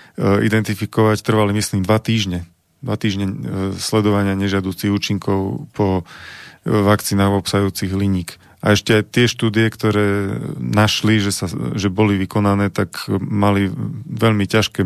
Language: Slovak